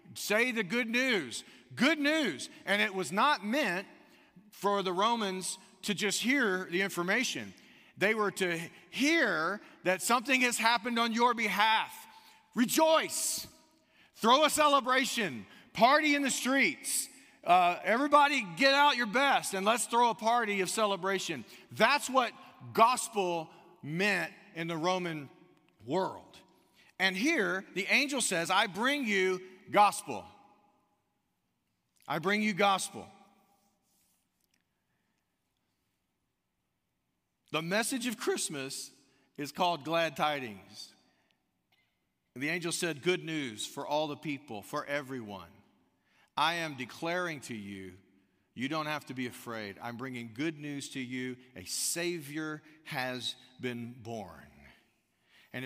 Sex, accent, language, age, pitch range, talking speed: male, American, English, 40-59, 145-230 Hz, 125 wpm